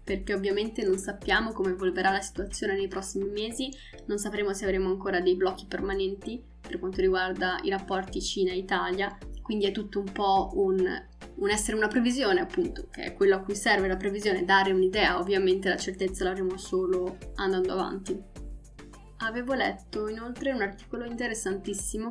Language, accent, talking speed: Italian, native, 160 wpm